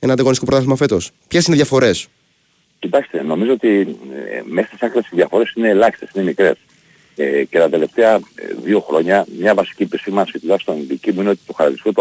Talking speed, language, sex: 185 wpm, Greek, male